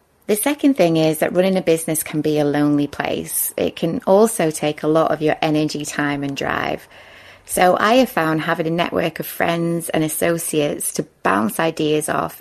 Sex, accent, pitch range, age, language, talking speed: female, British, 155-185 Hz, 20-39, English, 195 wpm